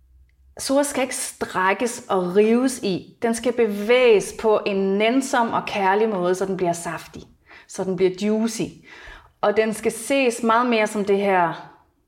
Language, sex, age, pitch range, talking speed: Danish, female, 30-49, 170-220 Hz, 165 wpm